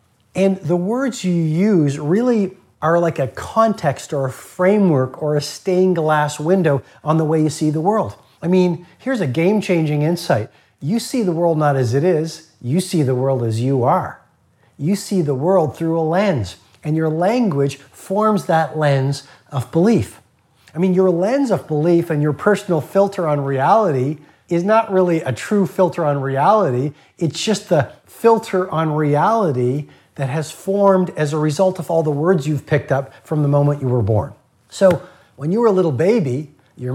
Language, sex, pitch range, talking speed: English, male, 145-185 Hz, 185 wpm